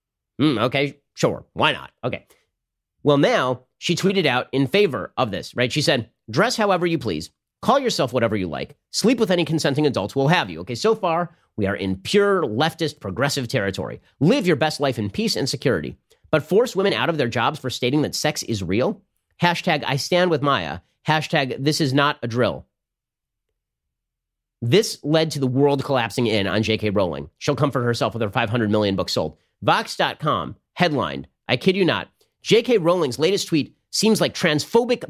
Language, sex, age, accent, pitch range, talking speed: English, male, 40-59, American, 120-170 Hz, 190 wpm